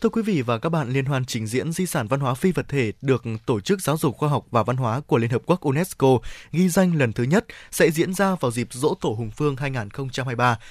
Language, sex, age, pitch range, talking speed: Vietnamese, male, 20-39, 130-175 Hz, 265 wpm